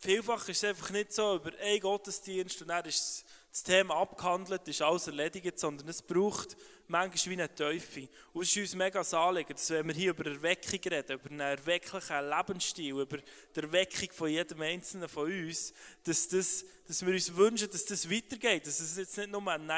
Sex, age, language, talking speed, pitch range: male, 20-39, German, 195 wpm, 160-195 Hz